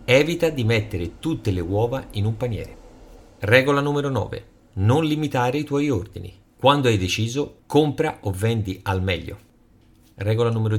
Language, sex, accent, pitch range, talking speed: Italian, male, native, 100-125 Hz, 150 wpm